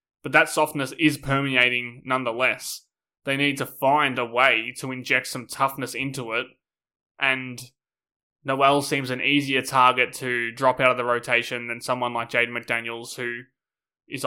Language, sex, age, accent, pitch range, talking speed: English, male, 20-39, Australian, 120-135 Hz, 155 wpm